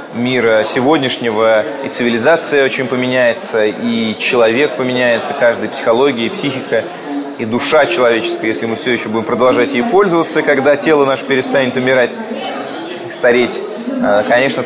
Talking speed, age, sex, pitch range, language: 125 wpm, 20-39, male, 120-155 Hz, Russian